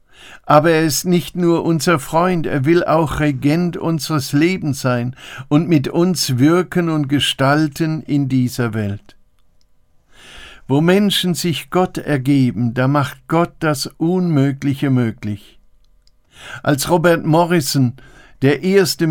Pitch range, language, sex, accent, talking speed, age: 130-160 Hz, German, male, German, 120 wpm, 60-79